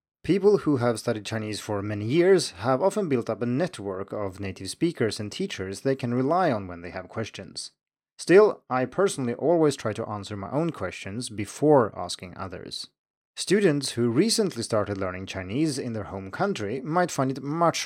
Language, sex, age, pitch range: Chinese, male, 30-49, 100-150 Hz